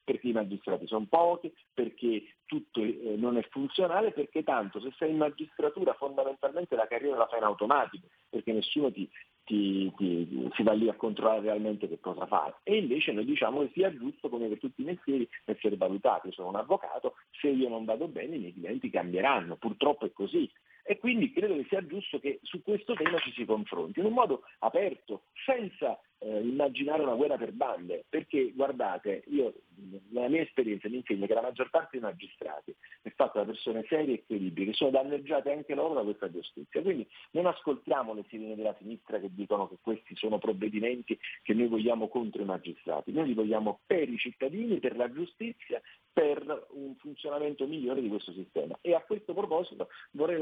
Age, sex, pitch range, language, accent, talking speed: 40-59, male, 110-180 Hz, Italian, native, 185 wpm